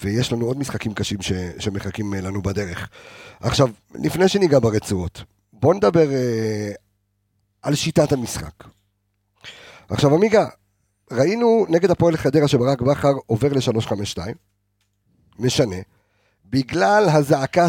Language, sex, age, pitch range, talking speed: Hebrew, male, 50-69, 100-135 Hz, 110 wpm